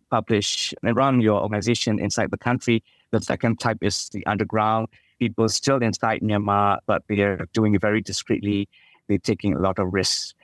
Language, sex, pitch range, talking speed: English, male, 100-115 Hz, 180 wpm